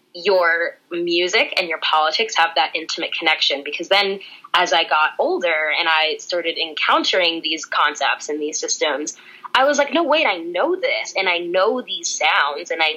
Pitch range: 160-230 Hz